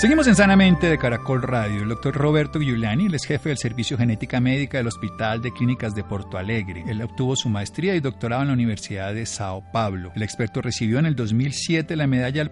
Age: 40-59